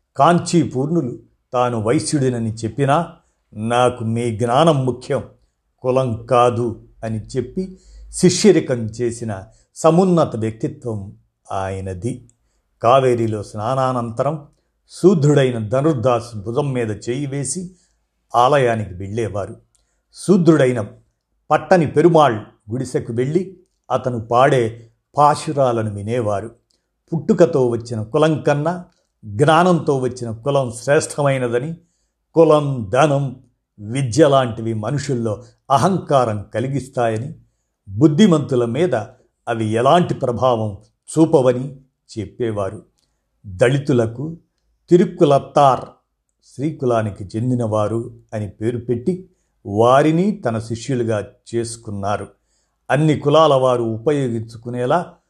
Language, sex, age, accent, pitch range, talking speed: Telugu, male, 50-69, native, 115-150 Hz, 80 wpm